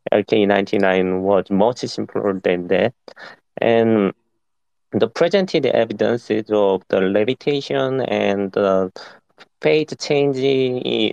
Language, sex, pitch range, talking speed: English, male, 100-130 Hz, 95 wpm